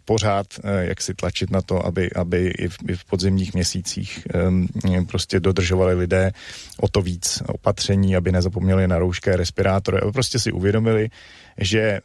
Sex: male